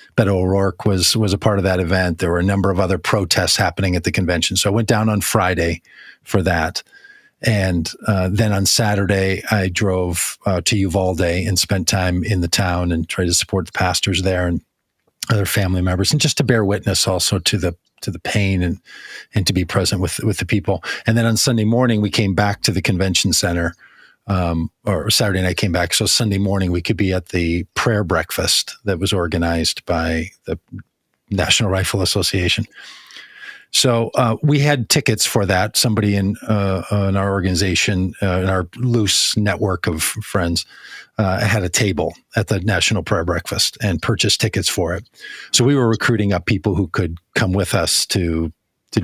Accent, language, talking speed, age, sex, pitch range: American, English, 195 wpm, 40-59, male, 90-110 Hz